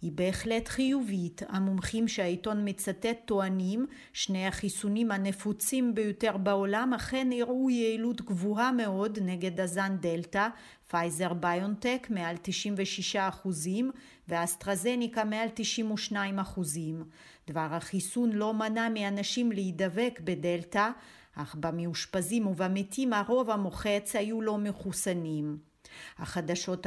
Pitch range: 185-225 Hz